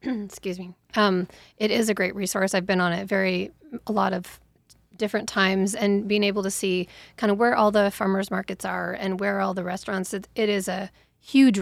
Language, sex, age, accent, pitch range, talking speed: English, female, 20-39, American, 180-200 Hz, 210 wpm